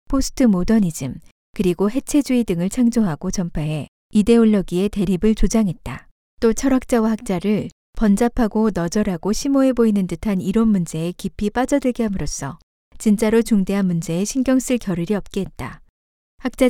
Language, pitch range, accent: Korean, 180-235 Hz, native